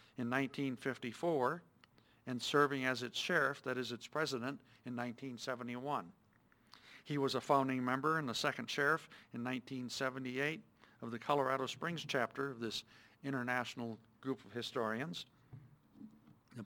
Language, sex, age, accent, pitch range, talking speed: English, male, 60-79, American, 120-140 Hz, 130 wpm